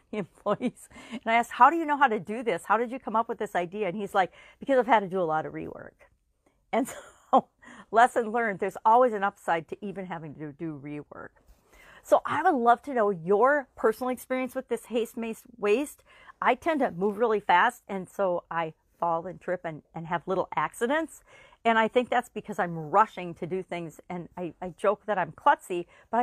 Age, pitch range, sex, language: 40-59, 175-235 Hz, female, English